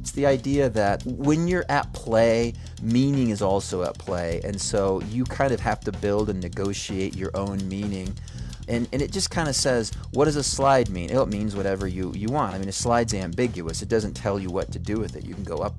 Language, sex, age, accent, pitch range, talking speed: English, male, 30-49, American, 95-125 Hz, 235 wpm